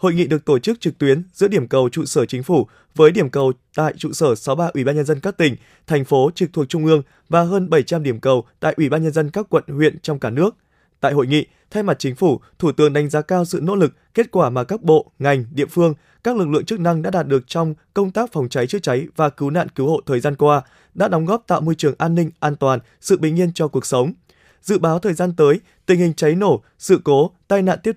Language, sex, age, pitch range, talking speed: Vietnamese, male, 20-39, 145-185 Hz, 270 wpm